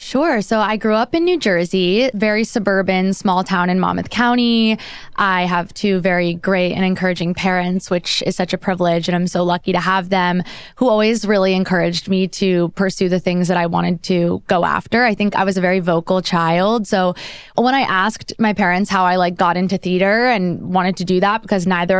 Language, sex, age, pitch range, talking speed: English, female, 20-39, 180-205 Hz, 210 wpm